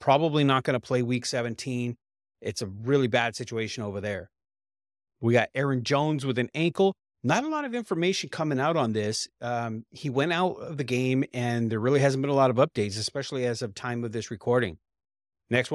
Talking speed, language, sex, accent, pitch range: 205 wpm, English, male, American, 115-140 Hz